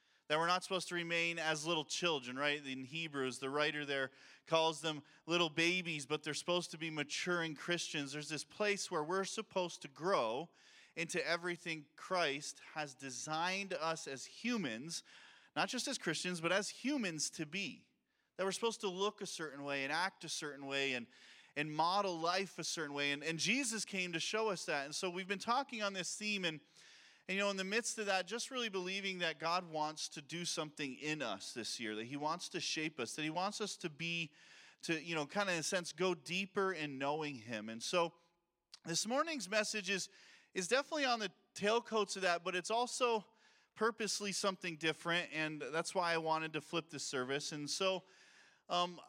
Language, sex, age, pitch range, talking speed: English, male, 30-49, 155-205 Hz, 200 wpm